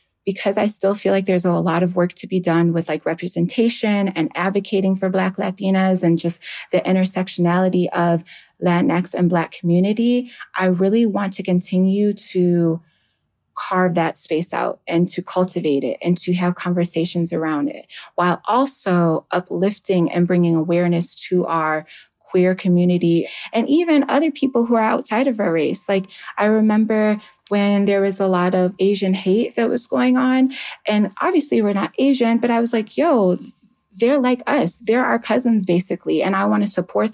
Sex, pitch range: female, 175-210 Hz